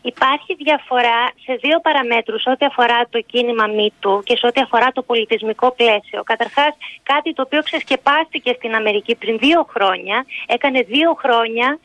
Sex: female